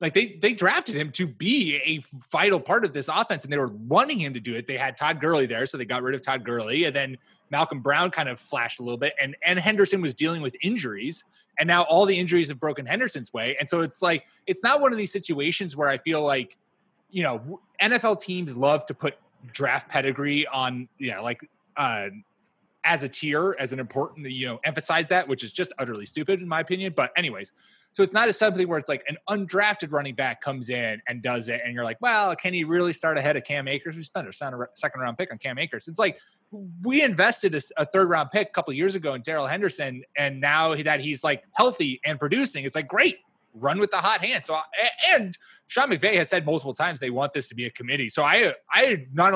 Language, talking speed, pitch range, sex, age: English, 245 wpm, 135-185 Hz, male, 20-39